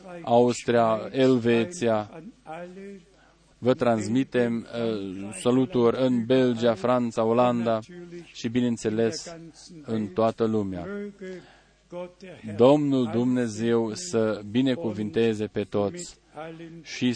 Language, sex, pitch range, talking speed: Romanian, male, 115-140 Hz, 80 wpm